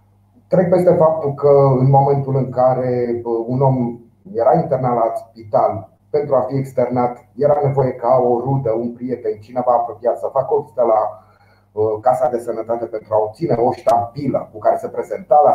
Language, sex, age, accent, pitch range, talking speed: Romanian, male, 30-49, native, 110-140 Hz, 170 wpm